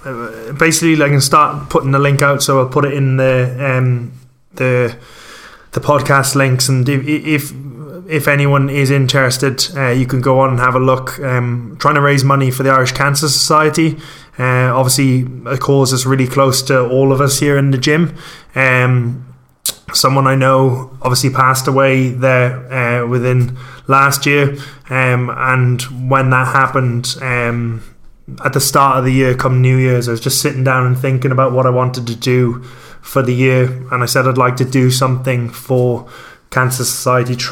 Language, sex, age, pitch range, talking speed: English, male, 20-39, 125-135 Hz, 180 wpm